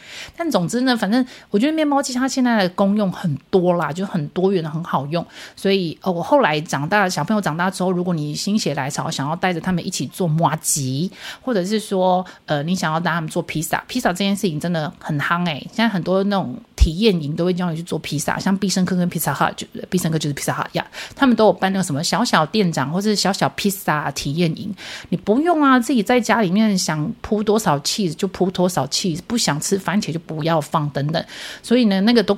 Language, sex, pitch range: Chinese, female, 155-205 Hz